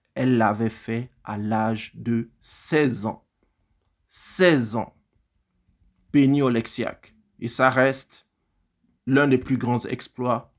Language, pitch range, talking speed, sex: French, 115-145 Hz, 115 wpm, male